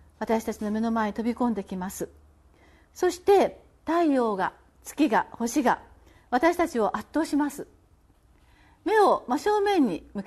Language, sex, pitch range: Japanese, female, 210-310 Hz